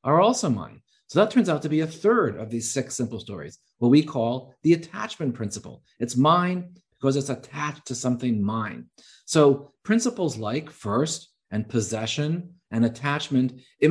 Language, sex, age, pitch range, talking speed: English, male, 40-59, 120-165 Hz, 170 wpm